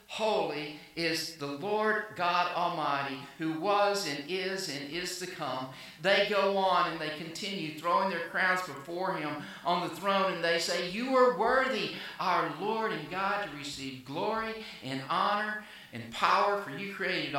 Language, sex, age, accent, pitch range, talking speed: English, male, 50-69, American, 155-200 Hz, 165 wpm